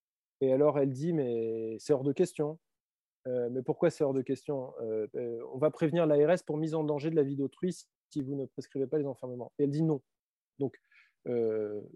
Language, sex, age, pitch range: French, male, 20-39, 125-160 Hz